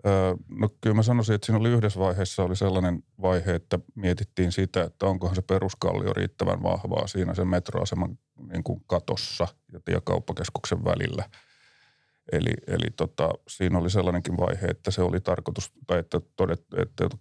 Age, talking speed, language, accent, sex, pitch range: 30-49, 155 wpm, Finnish, native, male, 90-110 Hz